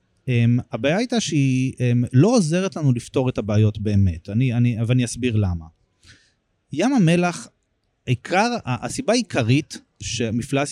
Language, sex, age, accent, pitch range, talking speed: Hebrew, male, 30-49, native, 115-170 Hz, 130 wpm